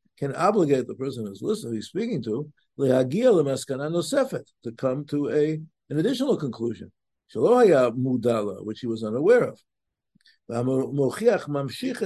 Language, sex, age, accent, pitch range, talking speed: English, male, 50-69, American, 125-170 Hz, 115 wpm